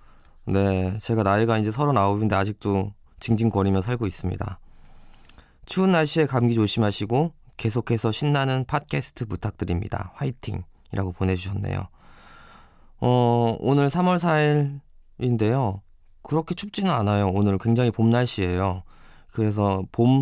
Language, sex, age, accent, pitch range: Korean, male, 20-39, native, 95-120 Hz